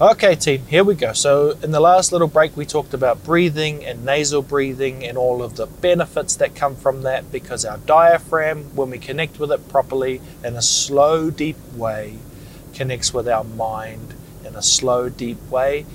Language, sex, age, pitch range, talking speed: English, male, 20-39, 120-165 Hz, 190 wpm